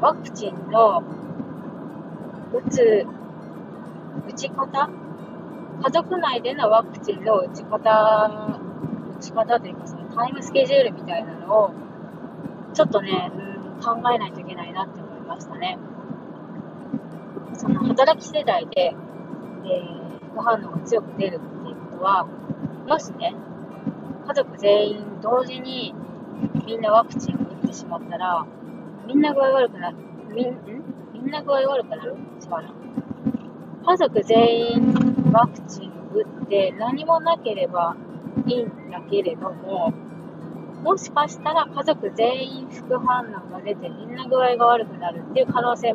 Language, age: Japanese, 20-39